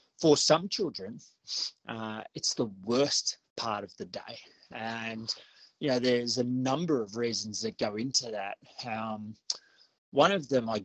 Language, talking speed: English, 155 wpm